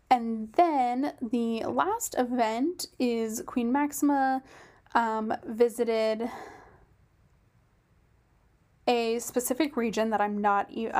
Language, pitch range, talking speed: English, 215-250 Hz, 95 wpm